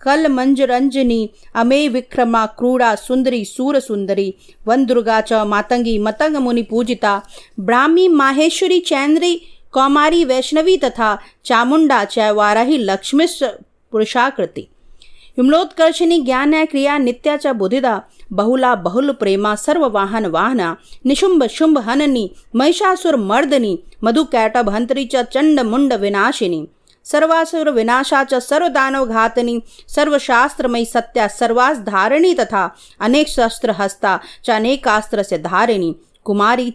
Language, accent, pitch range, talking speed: Hindi, native, 220-285 Hz, 85 wpm